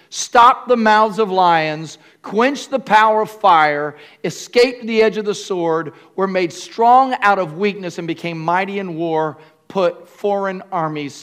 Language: English